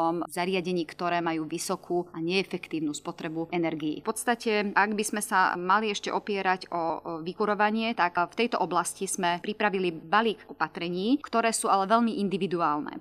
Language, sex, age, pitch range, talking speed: Slovak, female, 30-49, 180-210 Hz, 150 wpm